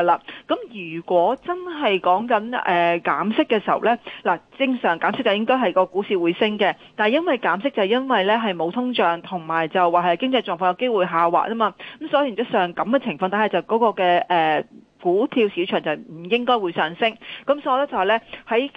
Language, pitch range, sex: Chinese, 190-255 Hz, female